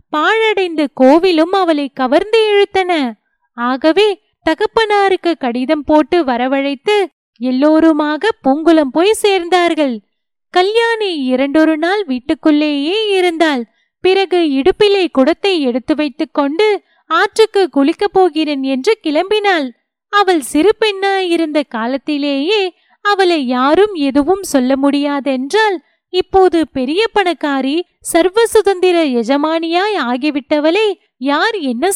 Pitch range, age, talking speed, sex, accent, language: 285-390 Hz, 20-39, 90 wpm, female, native, Tamil